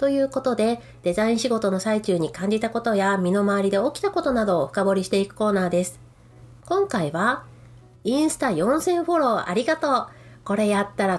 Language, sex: Japanese, female